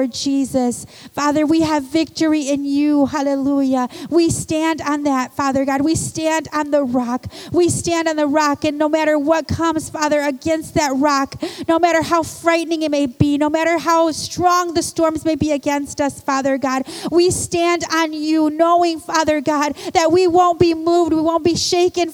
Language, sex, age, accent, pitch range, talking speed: English, female, 40-59, American, 310-360 Hz, 185 wpm